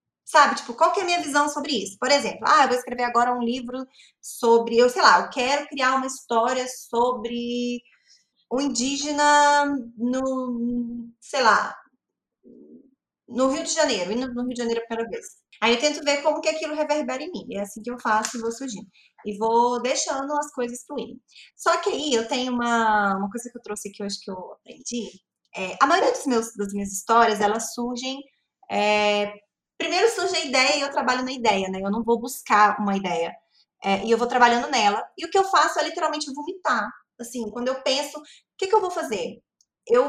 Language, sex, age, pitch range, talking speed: Portuguese, female, 20-39, 230-295 Hz, 210 wpm